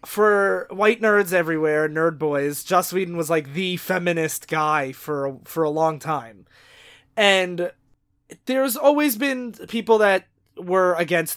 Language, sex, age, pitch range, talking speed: English, male, 20-39, 160-195 Hz, 135 wpm